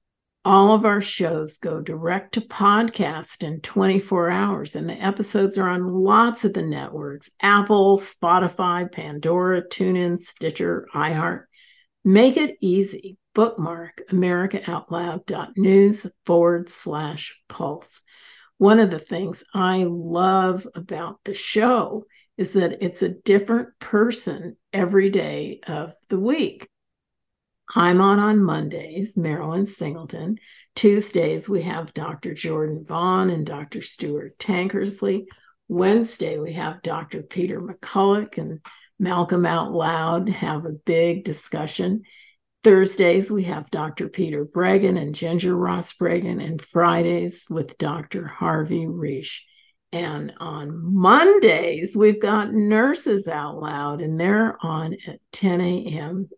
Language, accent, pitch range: English, American, 170-200 Hz